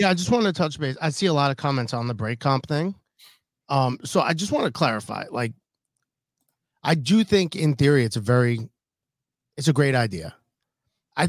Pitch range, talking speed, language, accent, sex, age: 125-160 Hz, 205 wpm, English, American, male, 30-49